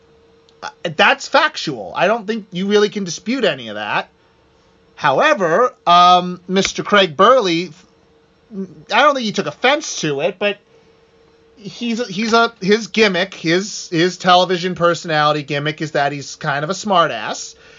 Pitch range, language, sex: 155-205 Hz, English, male